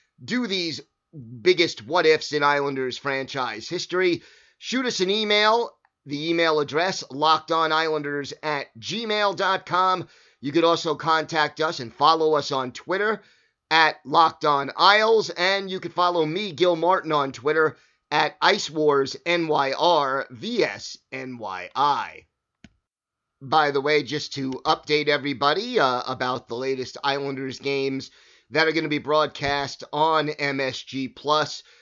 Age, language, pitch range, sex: 30-49, English, 140-165 Hz, male